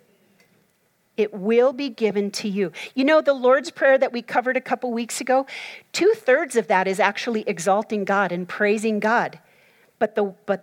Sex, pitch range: female, 200-245 Hz